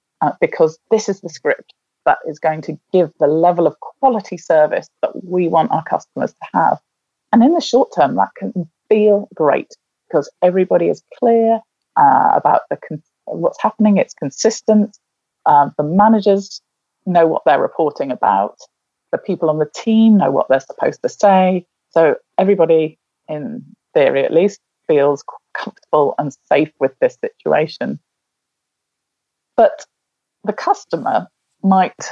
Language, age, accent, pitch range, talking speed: English, 30-49, British, 165-230 Hz, 150 wpm